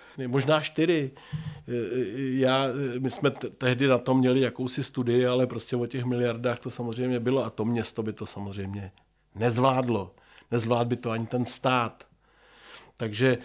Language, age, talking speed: Czech, 40-59, 150 wpm